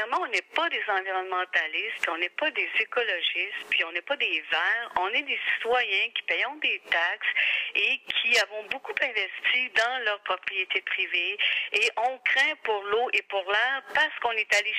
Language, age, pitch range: French, 50-69, 200-310 Hz